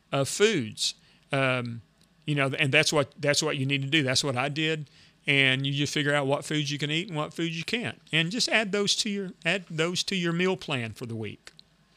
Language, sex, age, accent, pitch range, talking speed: English, male, 40-59, American, 135-170 Hz, 240 wpm